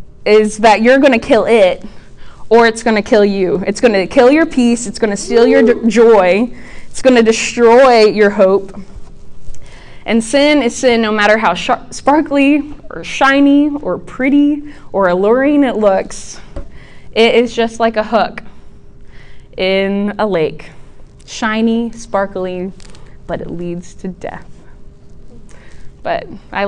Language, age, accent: English, 20-39, American